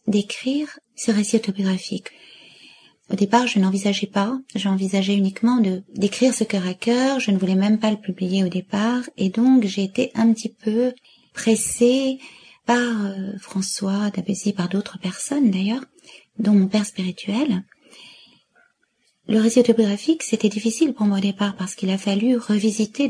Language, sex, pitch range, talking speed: French, female, 200-245 Hz, 155 wpm